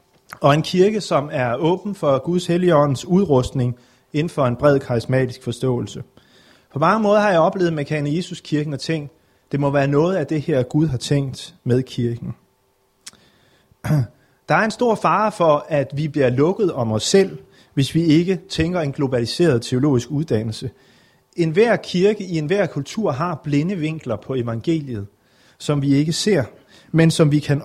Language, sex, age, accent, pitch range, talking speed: Danish, male, 30-49, native, 130-175 Hz, 175 wpm